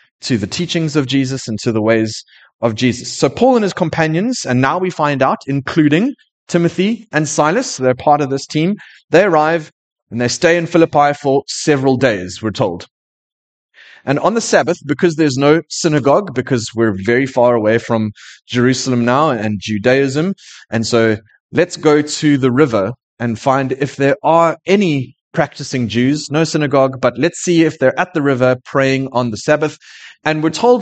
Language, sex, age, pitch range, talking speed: English, male, 20-39, 125-170 Hz, 180 wpm